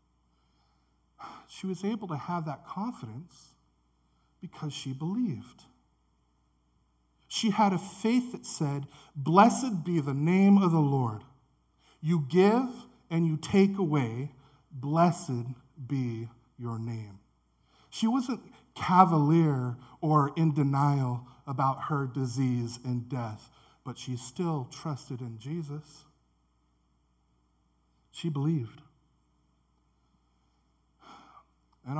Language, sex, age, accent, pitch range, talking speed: English, male, 50-69, American, 115-175 Hz, 100 wpm